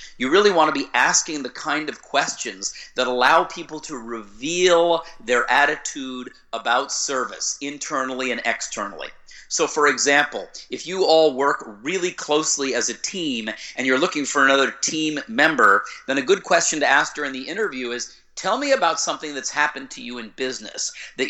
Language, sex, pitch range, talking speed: Dutch, male, 125-165 Hz, 175 wpm